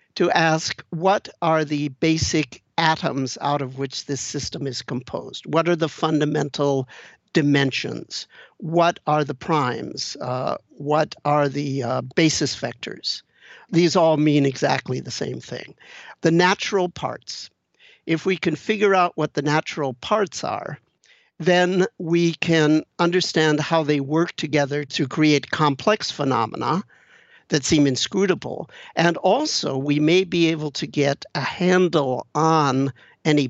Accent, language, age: American, English, 60-79